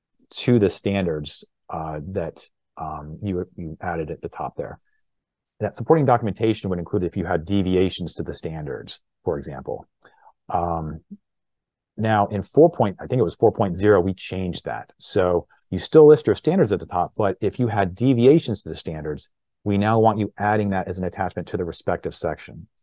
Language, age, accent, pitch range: English, 30-49, American, 85-105 Hz